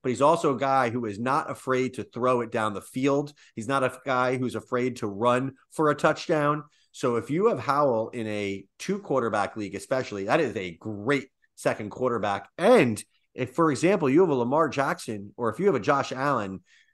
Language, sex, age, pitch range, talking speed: English, male, 30-49, 115-150 Hz, 210 wpm